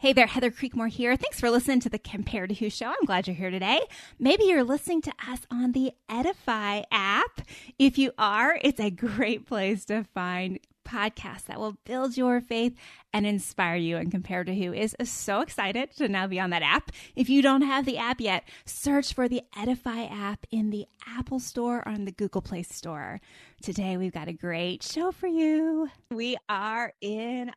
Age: 20-39